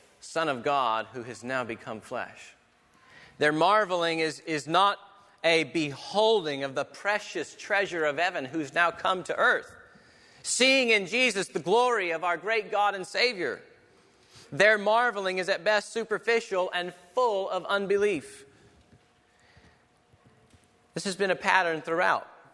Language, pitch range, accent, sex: English, 150-220 Hz, American, male